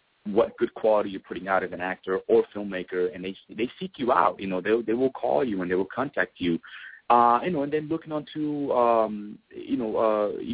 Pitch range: 100-145 Hz